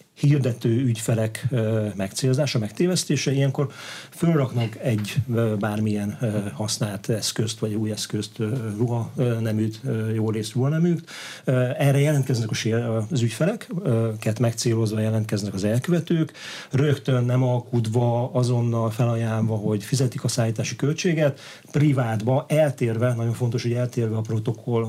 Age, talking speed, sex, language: 40-59, 110 wpm, male, Hungarian